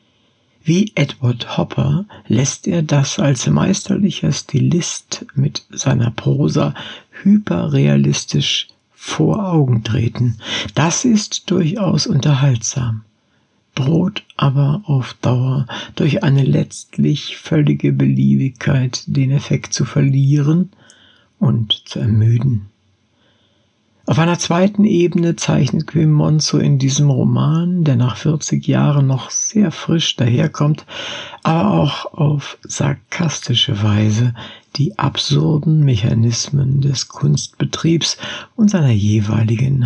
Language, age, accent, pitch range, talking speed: German, 60-79, German, 115-160 Hz, 100 wpm